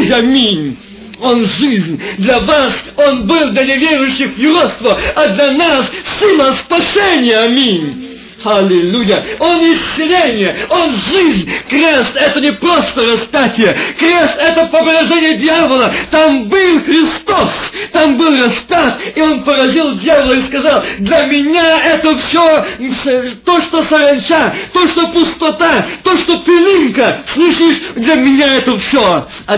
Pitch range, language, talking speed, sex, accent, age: 230-320 Hz, Russian, 125 wpm, male, native, 50-69